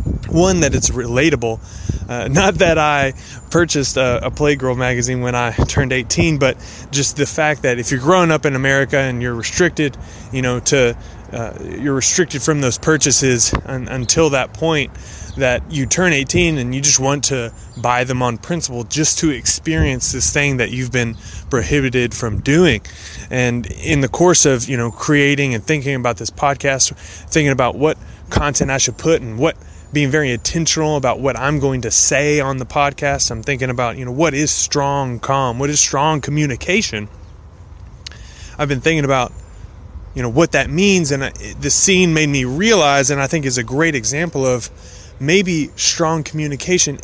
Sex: male